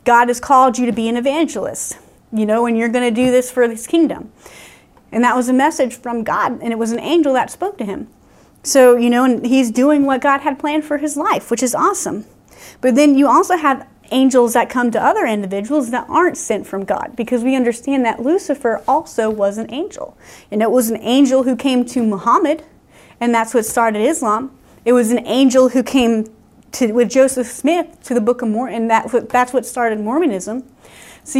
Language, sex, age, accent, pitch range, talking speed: English, female, 30-49, American, 235-280 Hz, 215 wpm